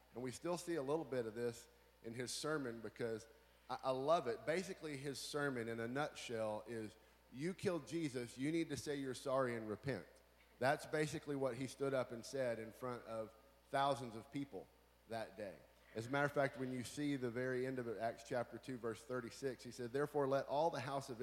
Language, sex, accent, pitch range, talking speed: English, male, American, 115-140 Hz, 220 wpm